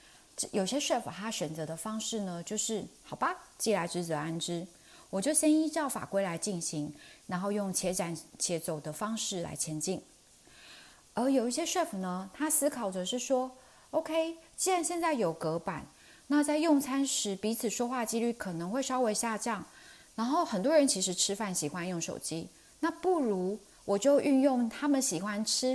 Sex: female